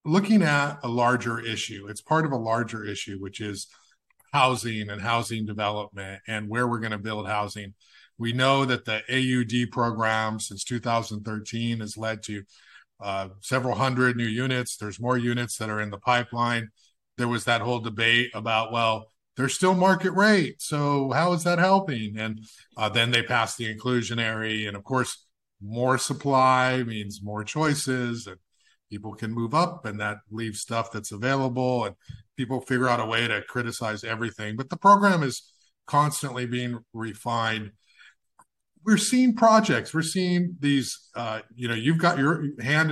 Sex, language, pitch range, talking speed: male, English, 110-145 Hz, 165 wpm